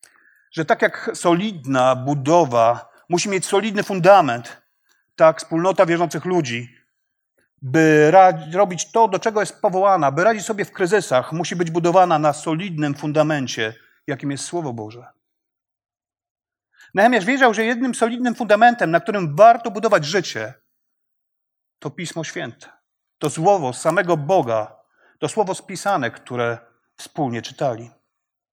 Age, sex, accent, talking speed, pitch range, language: 40-59, male, native, 125 wpm, 140-195 Hz, Polish